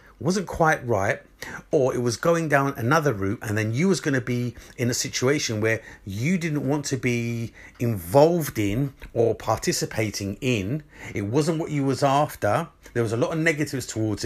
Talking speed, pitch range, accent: 185 wpm, 110-155 Hz, British